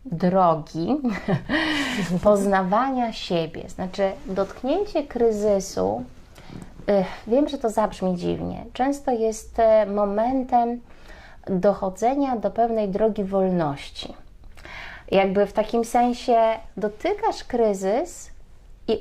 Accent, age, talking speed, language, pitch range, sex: native, 30-49, 80 wpm, Polish, 180-230 Hz, female